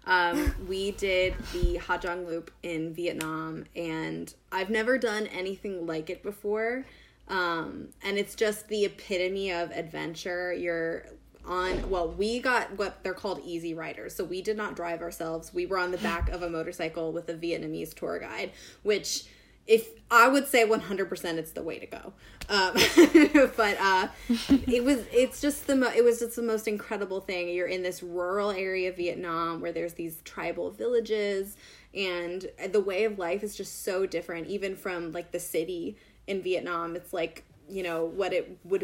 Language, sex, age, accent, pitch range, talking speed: English, female, 20-39, American, 170-205 Hz, 180 wpm